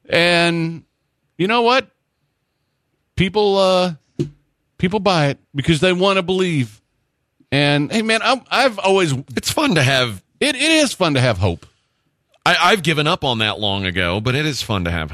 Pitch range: 105-145 Hz